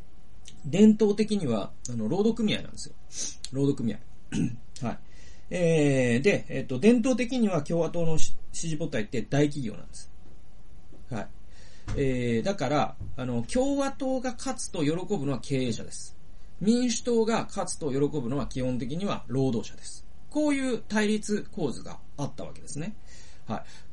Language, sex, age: Japanese, male, 40-59